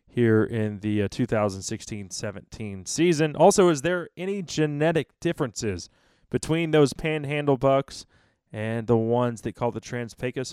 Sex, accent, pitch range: male, American, 115-155 Hz